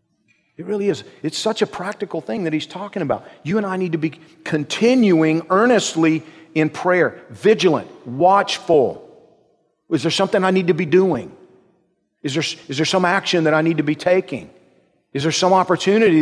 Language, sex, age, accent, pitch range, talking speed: English, male, 40-59, American, 150-195 Hz, 175 wpm